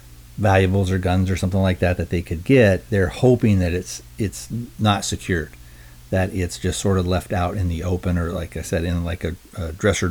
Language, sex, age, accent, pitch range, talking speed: English, male, 50-69, American, 85-105 Hz, 220 wpm